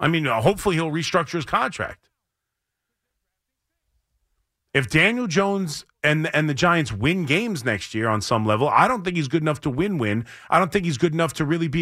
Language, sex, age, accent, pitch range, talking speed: English, male, 30-49, American, 160-225 Hz, 195 wpm